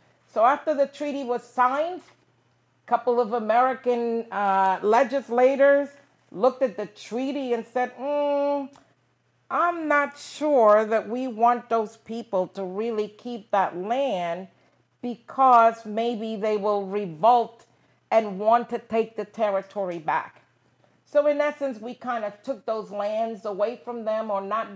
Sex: female